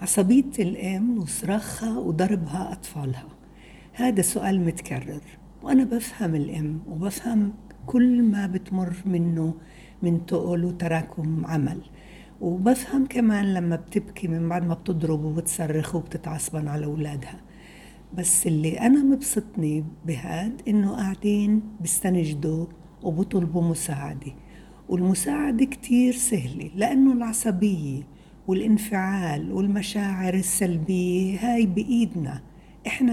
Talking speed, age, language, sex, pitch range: 95 wpm, 60-79, Arabic, female, 170-215 Hz